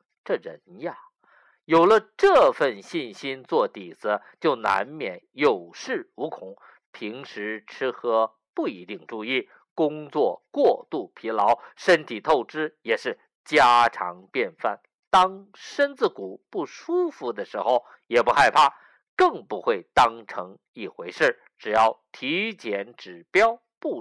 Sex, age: male, 50-69